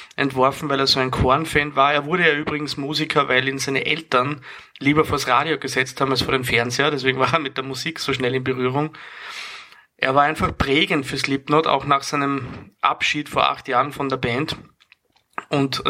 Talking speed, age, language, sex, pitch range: 195 wpm, 30-49, German, male, 130-150 Hz